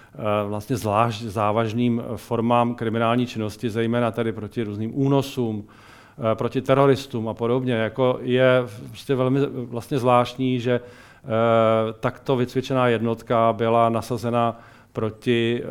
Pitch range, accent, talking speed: 115-140 Hz, native, 105 wpm